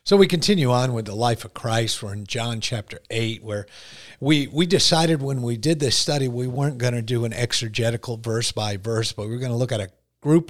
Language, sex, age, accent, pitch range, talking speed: English, male, 50-69, American, 110-150 Hz, 240 wpm